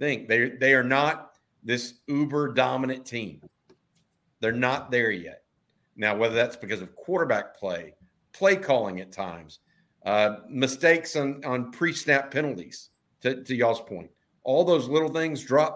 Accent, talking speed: American, 150 wpm